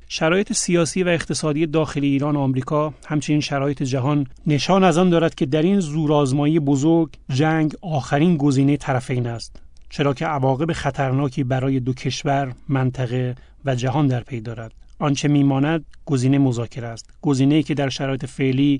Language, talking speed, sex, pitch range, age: Persian, 155 wpm, male, 130-150 Hz, 30-49